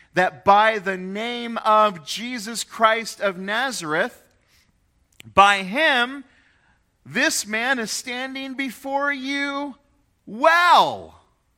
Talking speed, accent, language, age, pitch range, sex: 95 wpm, American, English, 40-59, 150-235 Hz, male